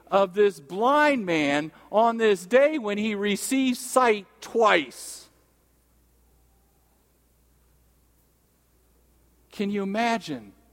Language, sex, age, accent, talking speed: English, male, 50-69, American, 85 wpm